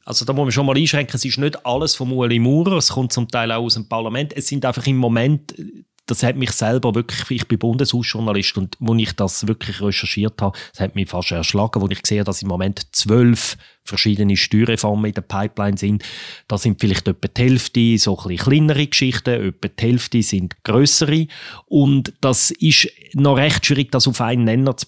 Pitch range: 110-140 Hz